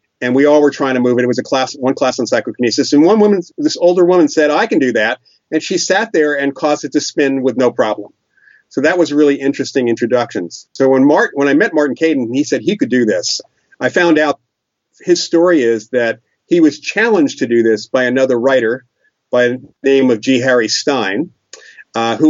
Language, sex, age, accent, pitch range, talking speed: English, male, 40-59, American, 120-150 Hz, 225 wpm